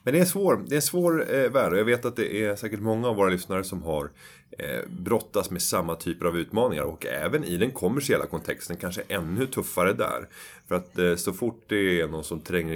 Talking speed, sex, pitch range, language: 235 wpm, male, 85-110 Hz, Swedish